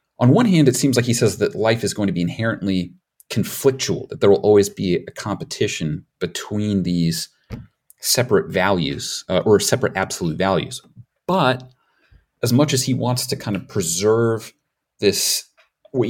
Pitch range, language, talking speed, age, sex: 95-135 Hz, English, 165 wpm, 30-49, male